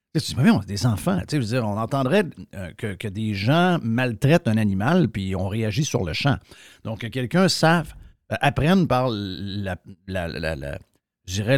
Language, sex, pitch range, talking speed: French, male, 100-140 Hz, 150 wpm